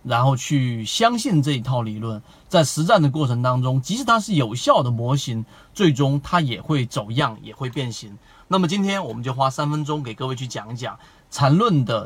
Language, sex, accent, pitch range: Chinese, male, native, 130-175 Hz